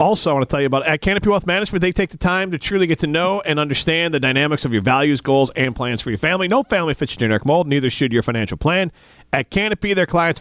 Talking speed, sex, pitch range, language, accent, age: 275 wpm, male, 125-160 Hz, English, American, 40-59